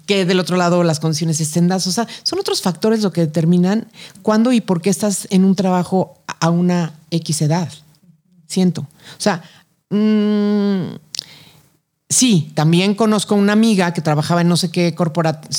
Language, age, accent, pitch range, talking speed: Spanish, 40-59, Mexican, 160-195 Hz, 165 wpm